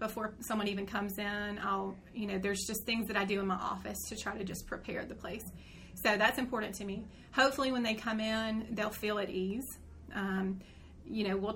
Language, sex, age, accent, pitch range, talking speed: English, female, 30-49, American, 200-225 Hz, 220 wpm